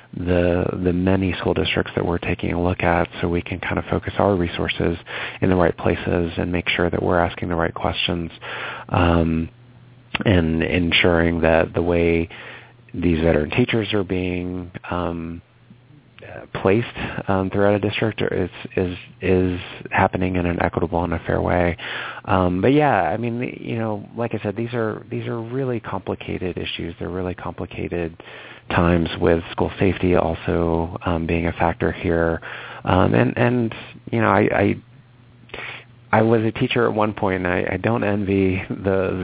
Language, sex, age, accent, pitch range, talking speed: English, male, 30-49, American, 85-105 Hz, 170 wpm